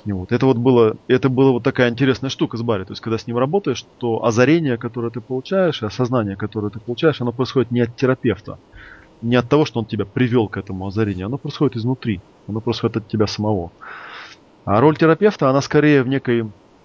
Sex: male